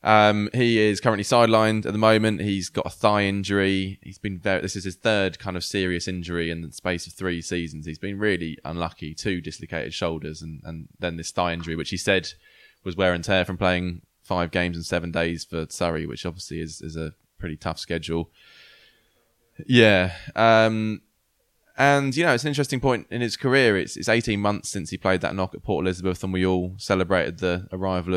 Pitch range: 90-105 Hz